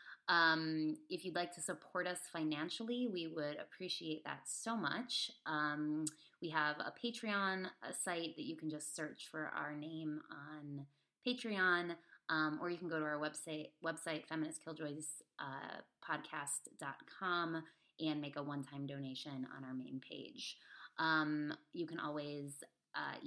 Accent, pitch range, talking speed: American, 145-165 Hz, 140 wpm